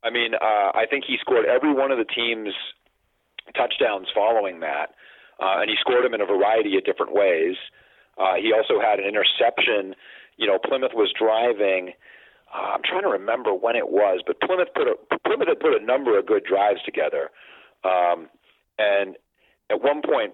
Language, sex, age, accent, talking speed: English, male, 40-59, American, 185 wpm